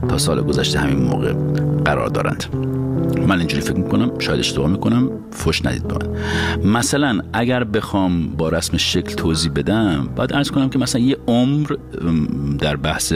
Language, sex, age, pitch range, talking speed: Persian, male, 50-69, 85-130 Hz, 160 wpm